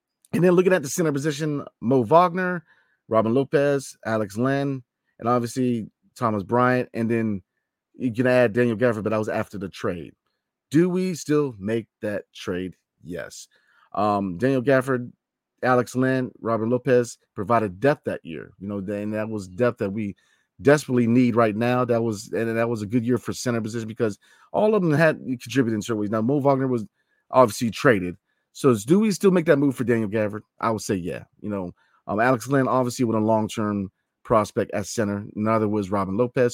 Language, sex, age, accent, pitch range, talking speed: English, male, 30-49, American, 110-145 Hz, 190 wpm